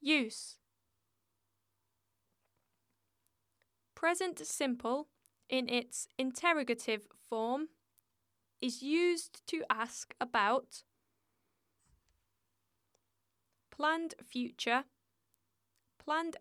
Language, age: English, 10-29